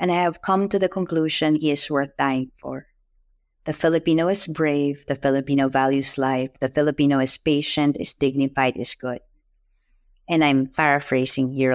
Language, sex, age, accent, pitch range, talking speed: Filipino, female, 50-69, native, 130-160 Hz, 165 wpm